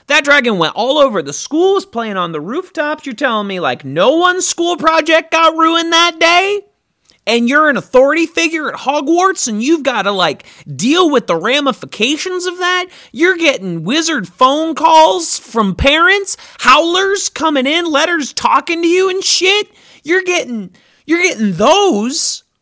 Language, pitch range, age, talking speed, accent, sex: English, 220-360 Hz, 30-49, 165 wpm, American, male